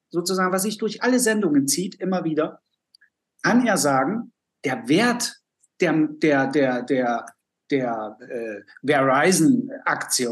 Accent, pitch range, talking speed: German, 145-220 Hz, 120 wpm